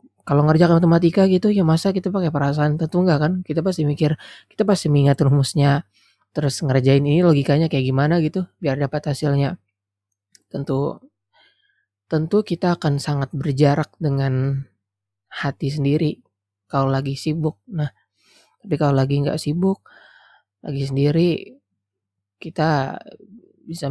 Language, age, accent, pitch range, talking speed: Indonesian, 20-39, native, 125-170 Hz, 130 wpm